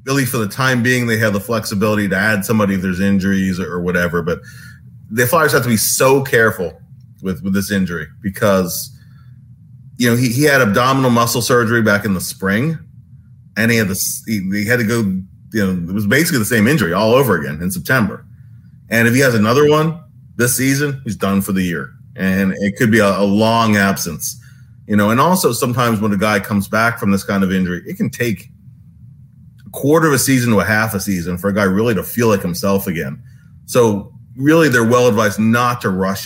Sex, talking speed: male, 215 wpm